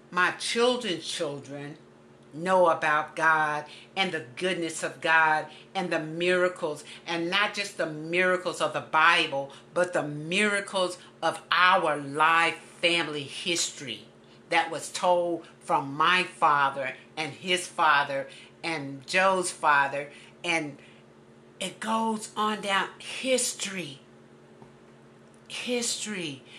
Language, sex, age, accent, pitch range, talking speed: English, female, 60-79, American, 140-185 Hz, 115 wpm